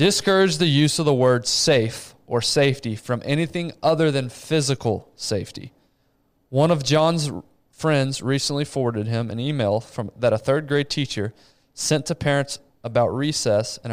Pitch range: 115-145 Hz